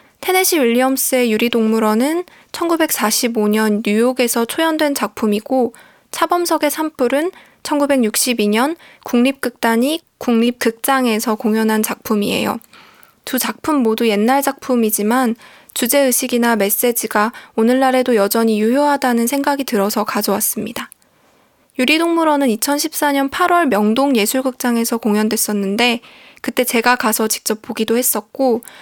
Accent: native